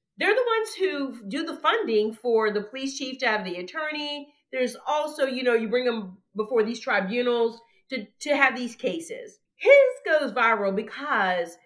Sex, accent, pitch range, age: female, American, 220-310 Hz, 40-59